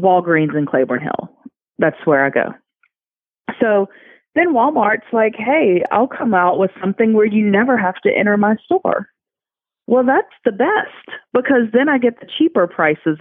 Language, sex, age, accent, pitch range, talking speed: English, female, 30-49, American, 180-250 Hz, 170 wpm